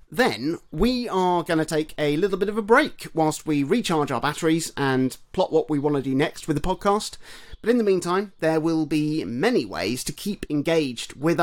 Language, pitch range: English, 140-180 Hz